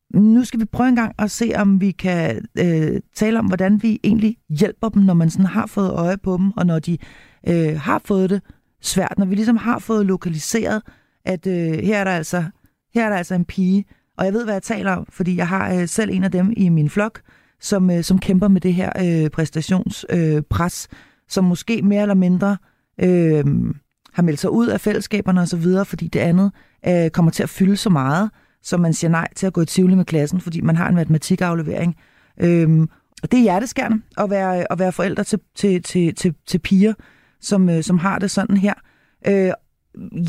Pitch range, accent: 170-205 Hz, native